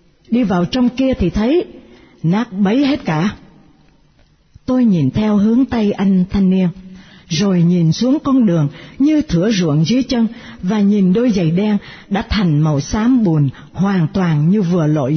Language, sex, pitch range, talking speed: Vietnamese, female, 165-240 Hz, 170 wpm